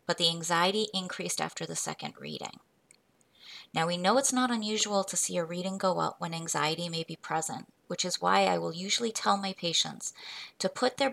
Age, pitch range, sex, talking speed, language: 20-39, 165-200 Hz, female, 200 wpm, English